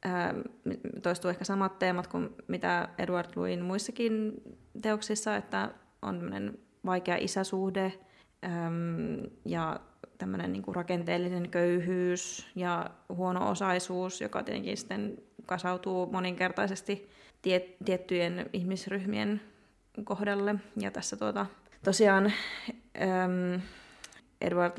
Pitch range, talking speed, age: 175-205 Hz, 90 wpm, 20-39